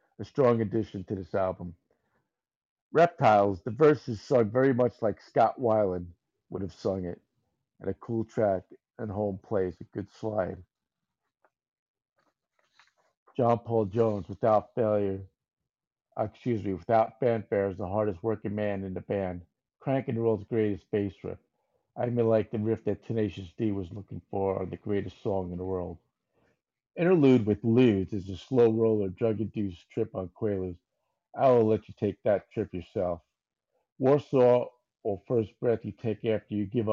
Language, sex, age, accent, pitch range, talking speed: English, male, 50-69, American, 100-120 Hz, 160 wpm